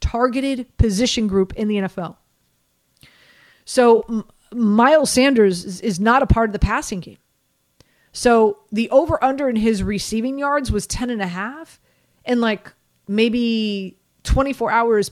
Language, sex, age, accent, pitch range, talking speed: English, female, 30-49, American, 205-275 Hz, 145 wpm